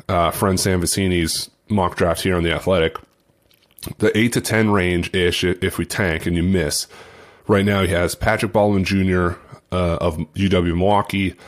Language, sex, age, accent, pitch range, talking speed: English, male, 30-49, American, 85-100 Hz, 160 wpm